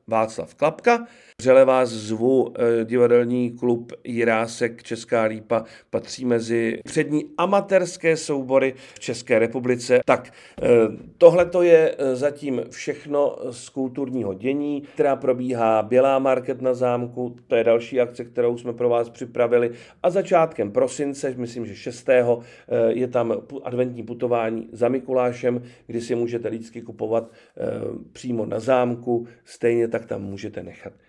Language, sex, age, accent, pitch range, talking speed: Czech, male, 40-59, native, 115-135 Hz, 130 wpm